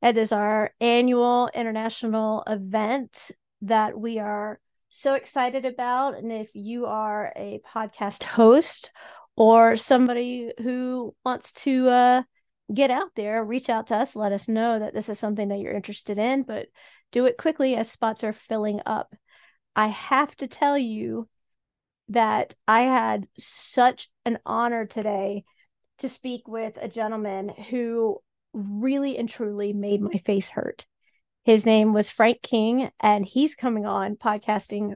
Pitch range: 210-245 Hz